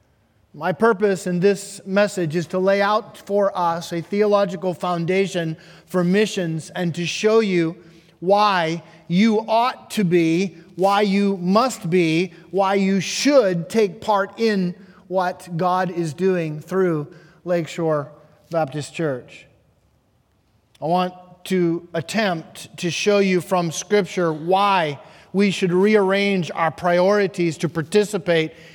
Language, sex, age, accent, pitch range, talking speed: English, male, 30-49, American, 170-205 Hz, 125 wpm